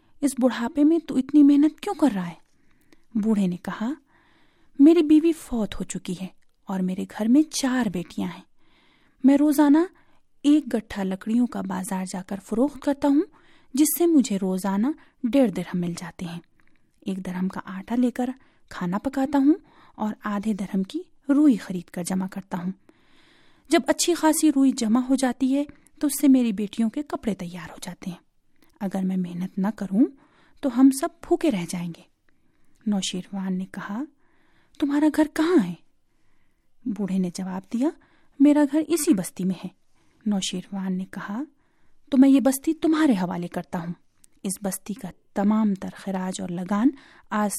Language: Urdu